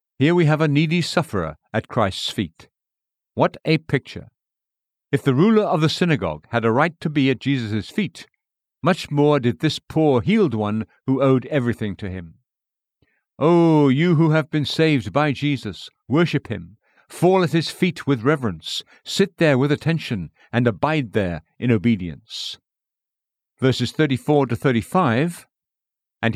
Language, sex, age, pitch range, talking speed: English, male, 60-79, 115-155 Hz, 155 wpm